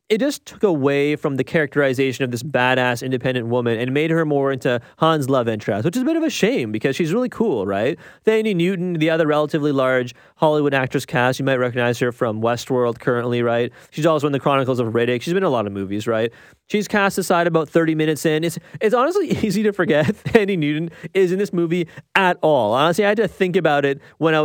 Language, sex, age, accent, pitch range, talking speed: English, male, 30-49, American, 135-195 Hz, 230 wpm